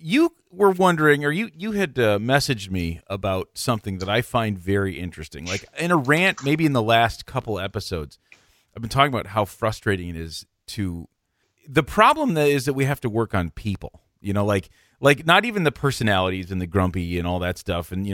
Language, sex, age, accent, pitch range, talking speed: English, male, 40-59, American, 90-135 Hz, 210 wpm